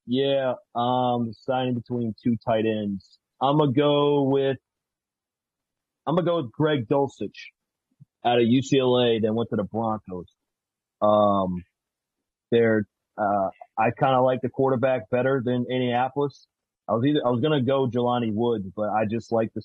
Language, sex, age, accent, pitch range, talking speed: English, male, 40-59, American, 100-125 Hz, 155 wpm